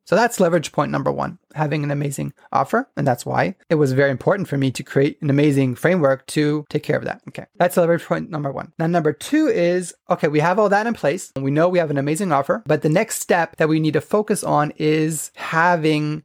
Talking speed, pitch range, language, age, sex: 245 wpm, 145-175 Hz, English, 30-49, male